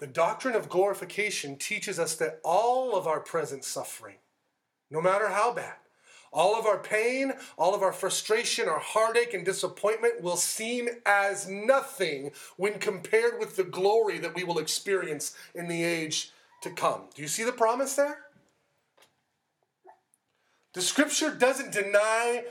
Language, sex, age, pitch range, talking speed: English, male, 30-49, 195-255 Hz, 150 wpm